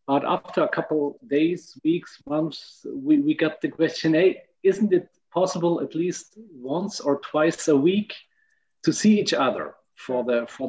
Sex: male